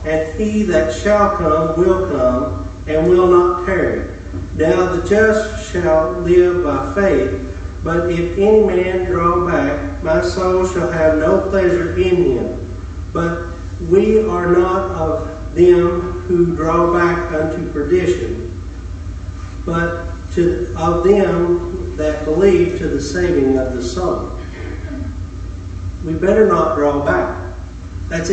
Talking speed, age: 130 wpm, 40-59